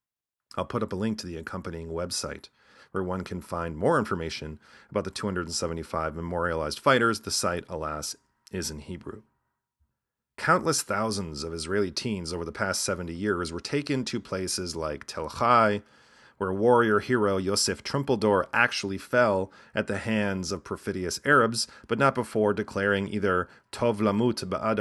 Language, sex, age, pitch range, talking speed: English, male, 40-59, 90-110 Hz, 150 wpm